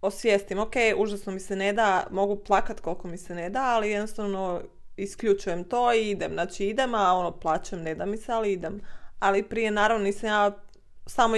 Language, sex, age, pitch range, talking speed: Croatian, female, 20-39, 185-215 Hz, 195 wpm